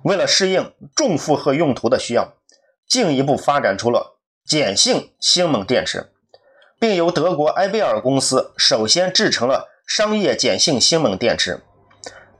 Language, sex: Chinese, male